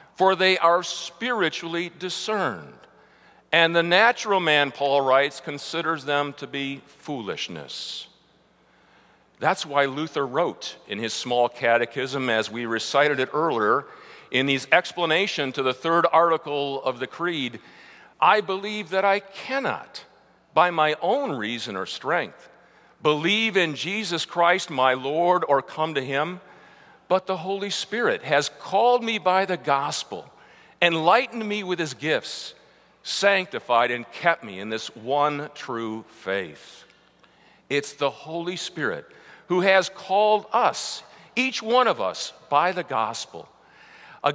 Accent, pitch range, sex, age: American, 140-195 Hz, male, 50-69